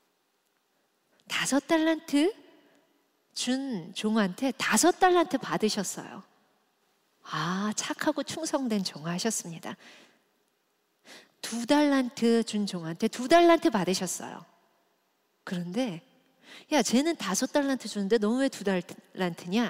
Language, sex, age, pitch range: Korean, female, 40-59, 190-290 Hz